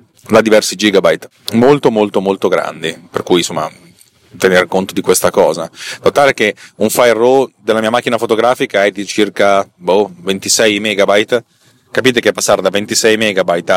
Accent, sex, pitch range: native, male, 100-120 Hz